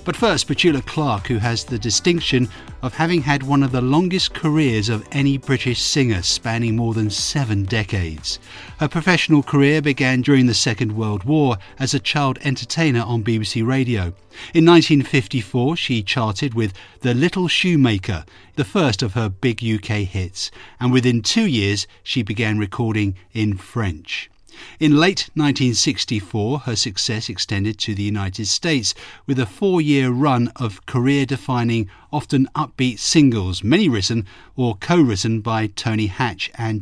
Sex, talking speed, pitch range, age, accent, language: male, 150 wpm, 105-140 Hz, 50-69, British, English